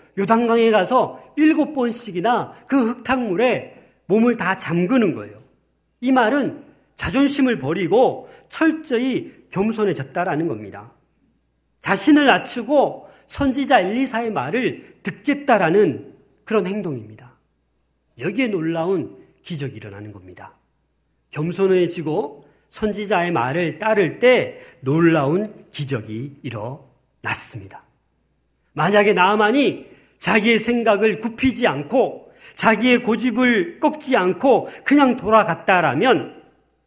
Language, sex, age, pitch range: Korean, male, 40-59, 145-240 Hz